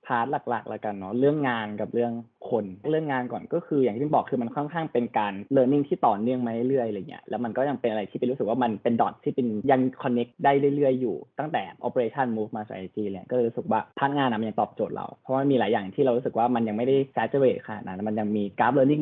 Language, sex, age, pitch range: Thai, male, 20-39, 110-135 Hz